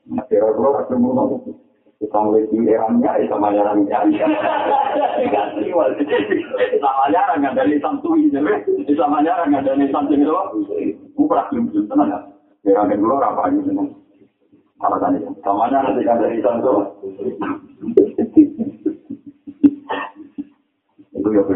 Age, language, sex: 50-69, Indonesian, male